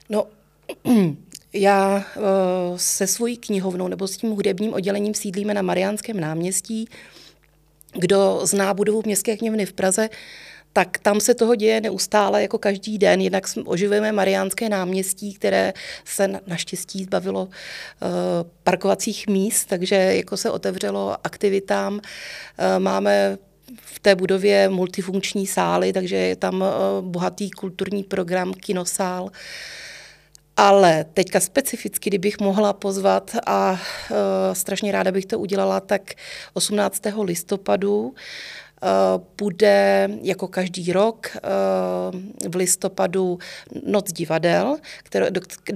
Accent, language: native, Czech